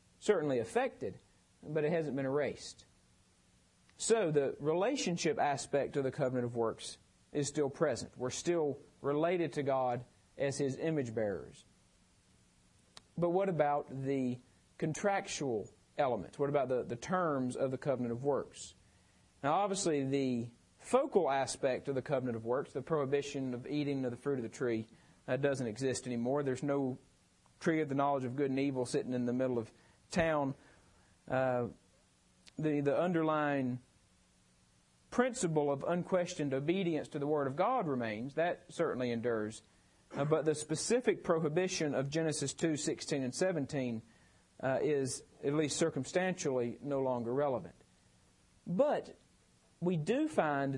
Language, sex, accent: English, male, American